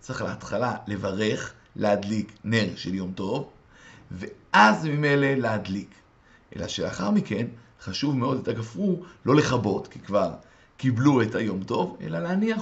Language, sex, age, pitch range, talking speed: Hebrew, male, 50-69, 115-175 Hz, 135 wpm